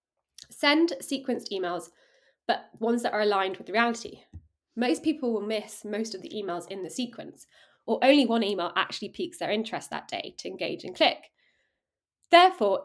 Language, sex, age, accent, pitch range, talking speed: English, female, 20-39, British, 200-260 Hz, 170 wpm